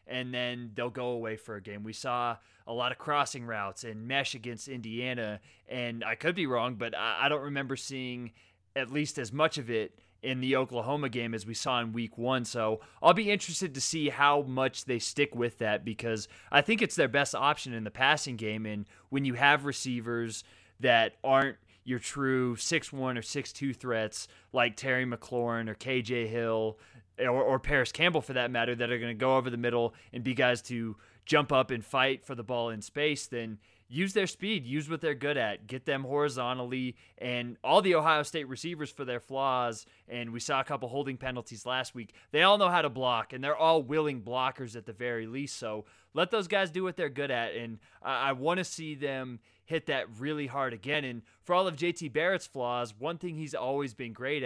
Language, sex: English, male